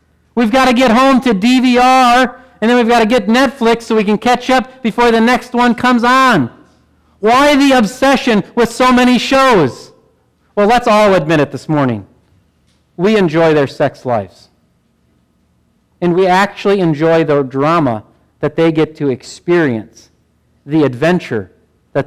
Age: 40-59